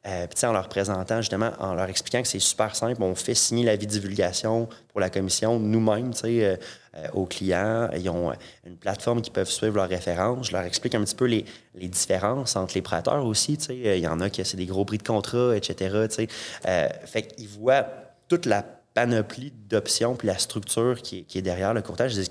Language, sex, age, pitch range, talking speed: French, male, 20-39, 95-120 Hz, 215 wpm